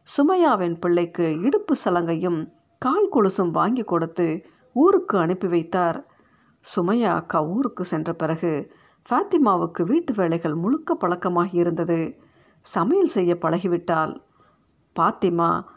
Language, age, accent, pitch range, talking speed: Tamil, 50-69, native, 175-250 Hz, 95 wpm